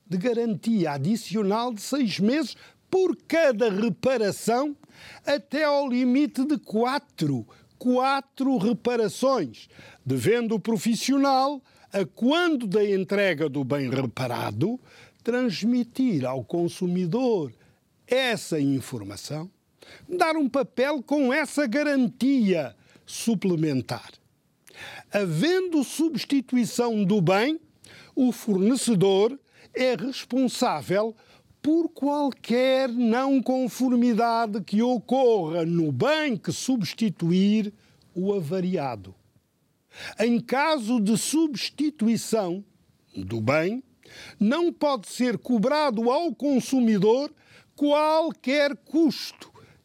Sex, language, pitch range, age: male, Portuguese, 185-270 Hz, 50-69